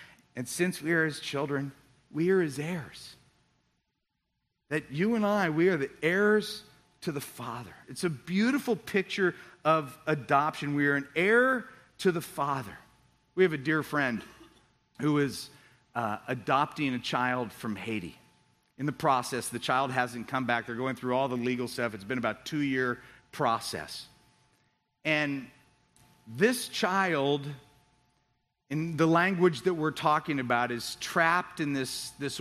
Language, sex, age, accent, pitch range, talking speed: English, male, 40-59, American, 140-195 Hz, 155 wpm